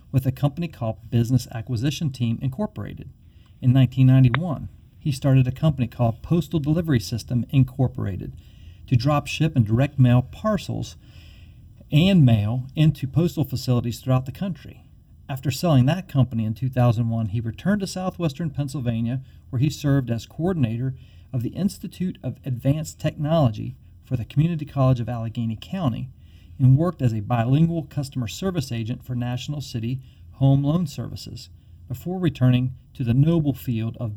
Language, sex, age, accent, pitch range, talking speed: English, male, 40-59, American, 115-145 Hz, 150 wpm